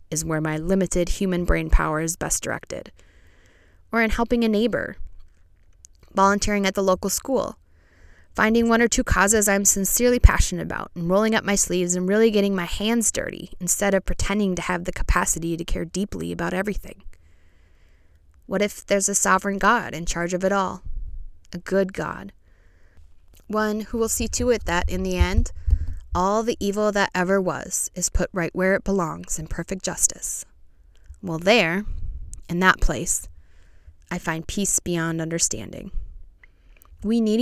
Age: 20-39